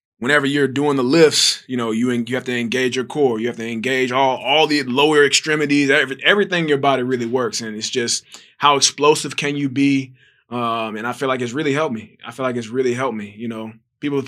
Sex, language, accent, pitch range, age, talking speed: male, English, American, 115-135 Hz, 20-39, 235 wpm